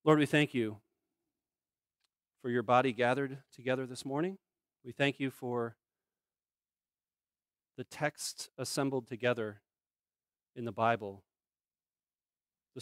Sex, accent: male, American